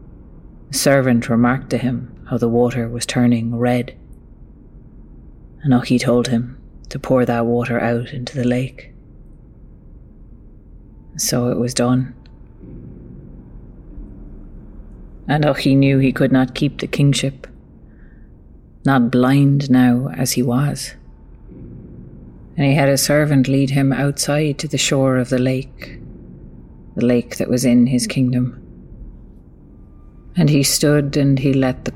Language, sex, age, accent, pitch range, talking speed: English, female, 30-49, Irish, 120-135 Hz, 130 wpm